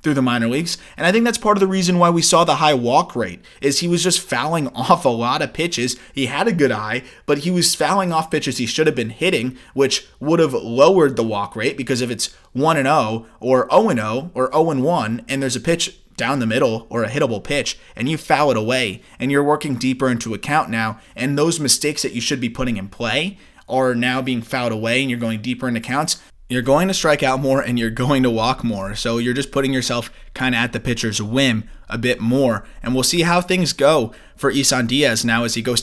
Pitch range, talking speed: 120-145 Hz, 240 wpm